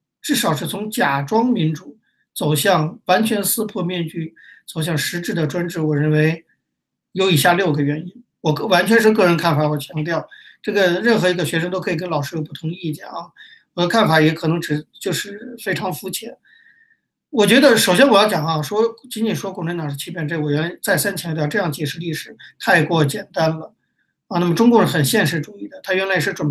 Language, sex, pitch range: Chinese, male, 155-210 Hz